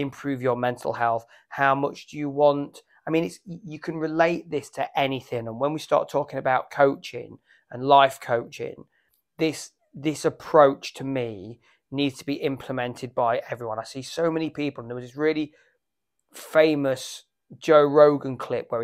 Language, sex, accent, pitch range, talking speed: English, male, British, 130-150 Hz, 170 wpm